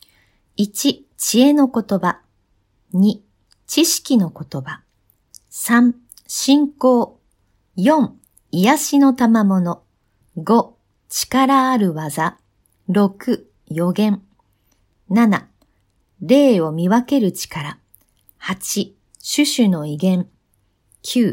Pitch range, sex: 175-250 Hz, female